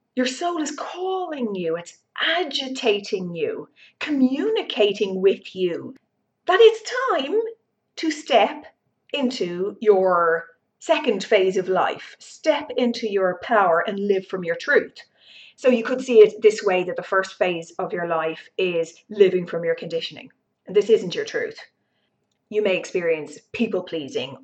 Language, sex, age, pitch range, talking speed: English, female, 30-49, 180-275 Hz, 145 wpm